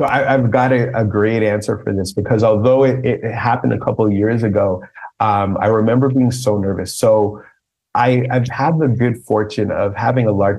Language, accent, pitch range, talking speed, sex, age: English, American, 105-130 Hz, 200 wpm, male, 30-49